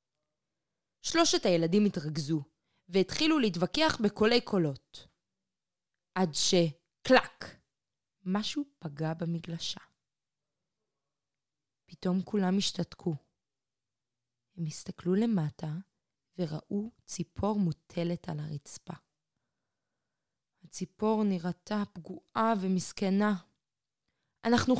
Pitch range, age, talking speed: 160-215 Hz, 20-39, 70 wpm